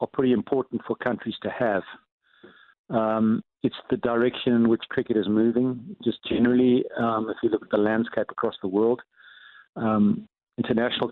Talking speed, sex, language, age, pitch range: 160 wpm, male, English, 50-69, 105-120 Hz